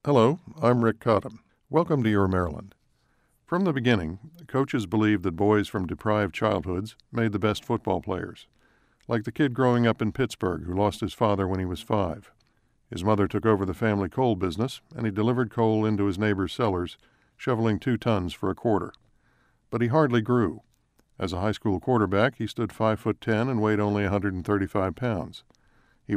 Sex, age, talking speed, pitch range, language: male, 60-79, 185 wpm, 100-120 Hz, English